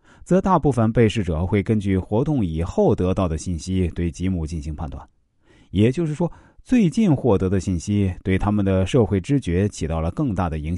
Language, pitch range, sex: Chinese, 90-135 Hz, male